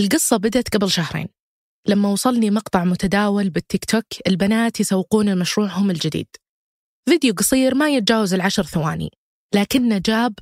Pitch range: 185-235 Hz